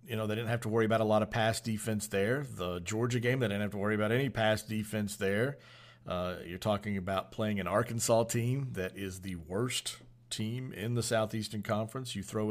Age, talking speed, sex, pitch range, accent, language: 50-69, 220 wpm, male, 100-120 Hz, American, English